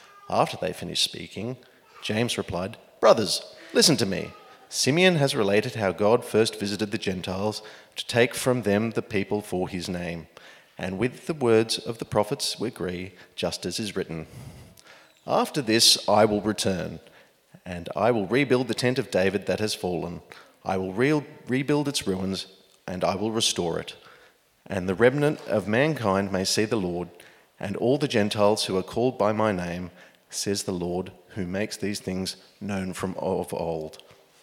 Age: 30-49